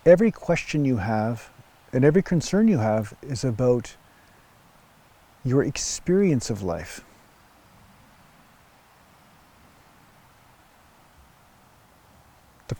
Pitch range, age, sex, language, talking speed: 115-155 Hz, 50-69, male, English, 75 wpm